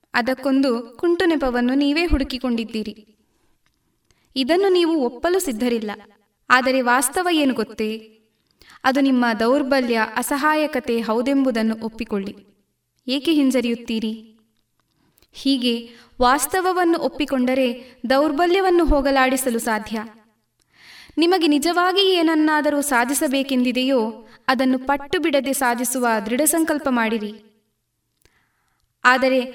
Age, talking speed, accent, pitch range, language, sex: 20-39, 80 wpm, native, 235-300 Hz, Kannada, female